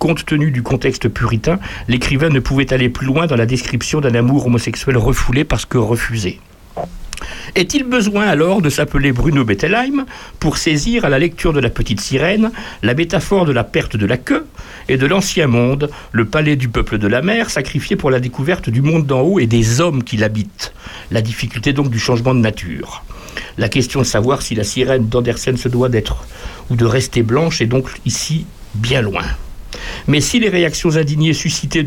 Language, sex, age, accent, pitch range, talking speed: French, male, 60-79, French, 115-160 Hz, 190 wpm